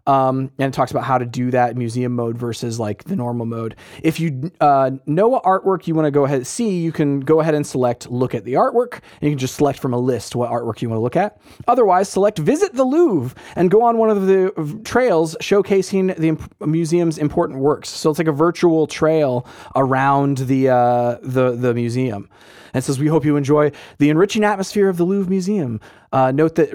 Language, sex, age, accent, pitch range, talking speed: English, male, 20-39, American, 135-180 Hz, 230 wpm